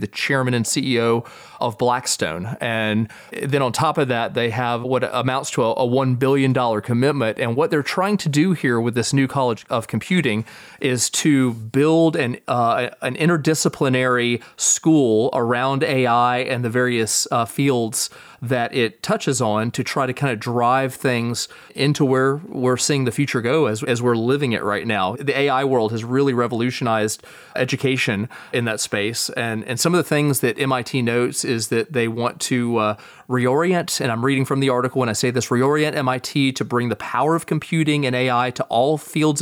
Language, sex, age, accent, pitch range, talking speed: English, male, 30-49, American, 120-140 Hz, 185 wpm